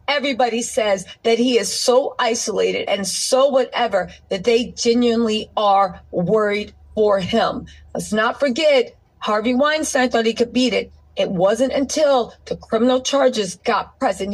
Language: English